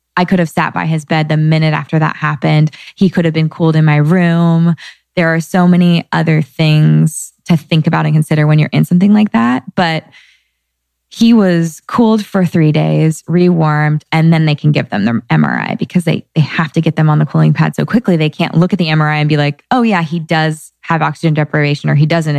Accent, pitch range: American, 155-170 Hz